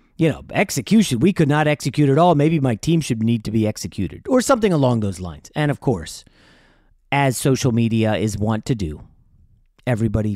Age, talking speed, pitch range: 40-59, 190 wpm, 120-180 Hz